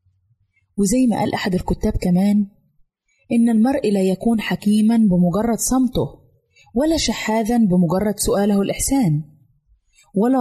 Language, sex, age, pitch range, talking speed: Arabic, female, 20-39, 170-235 Hz, 110 wpm